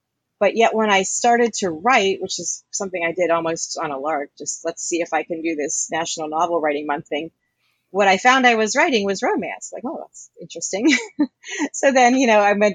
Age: 30-49